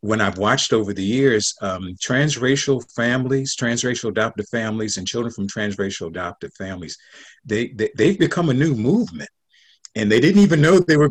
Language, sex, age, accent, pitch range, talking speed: English, male, 50-69, American, 90-130 Hz, 175 wpm